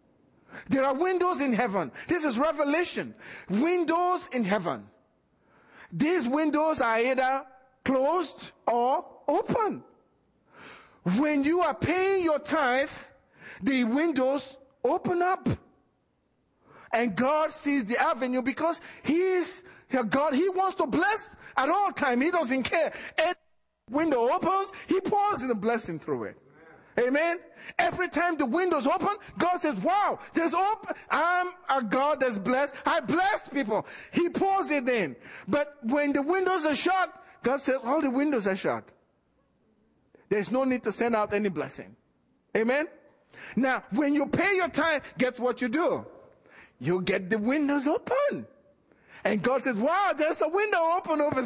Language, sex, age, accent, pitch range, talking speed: English, male, 40-59, Nigerian, 255-345 Hz, 150 wpm